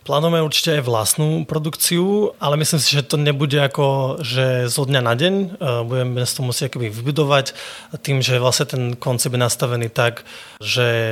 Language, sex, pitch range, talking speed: Slovak, male, 120-145 Hz, 165 wpm